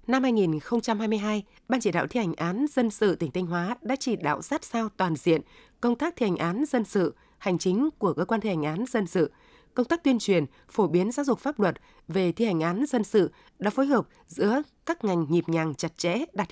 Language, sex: Vietnamese, female